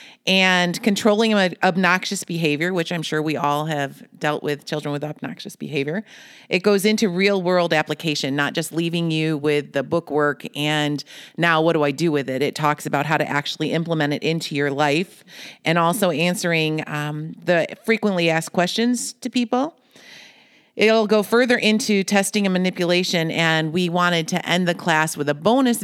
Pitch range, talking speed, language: 155-195 Hz, 175 wpm, English